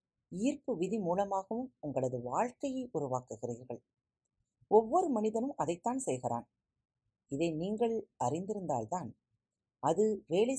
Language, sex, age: Tamil, female, 30-49